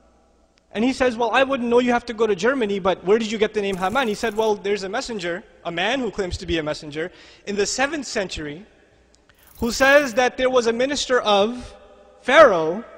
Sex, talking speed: male, 220 wpm